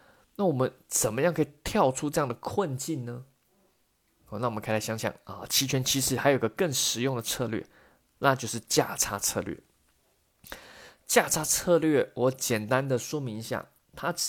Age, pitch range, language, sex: 20-39, 120-150 Hz, Chinese, male